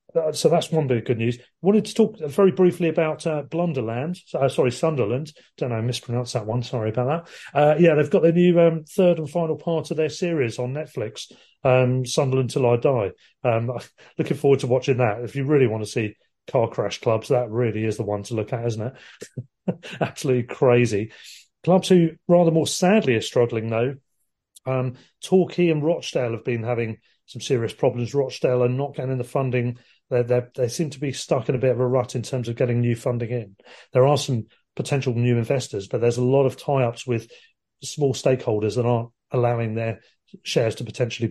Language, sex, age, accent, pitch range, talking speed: English, male, 40-59, British, 120-150 Hz, 200 wpm